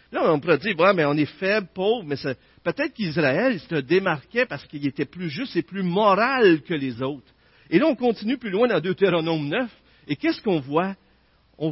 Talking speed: 210 wpm